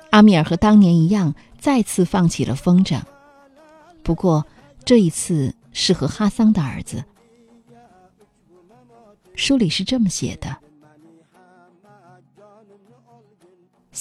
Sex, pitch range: female, 155-210 Hz